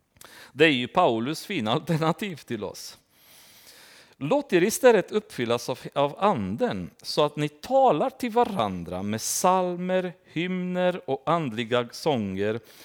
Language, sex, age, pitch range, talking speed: Swedish, male, 40-59, 115-170 Hz, 120 wpm